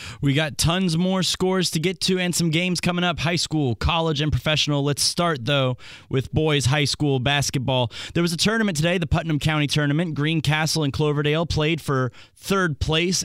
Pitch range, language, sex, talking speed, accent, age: 130-165 Hz, English, male, 190 wpm, American, 20-39